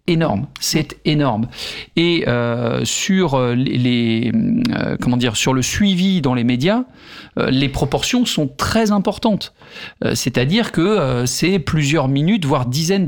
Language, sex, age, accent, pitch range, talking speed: French, male, 50-69, French, 135-185 Hz, 145 wpm